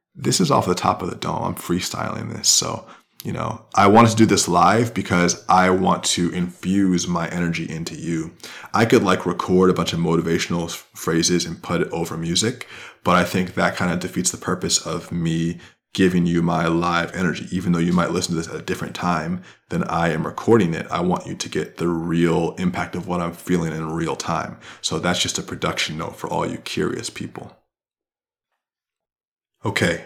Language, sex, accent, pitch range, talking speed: English, male, American, 85-110 Hz, 205 wpm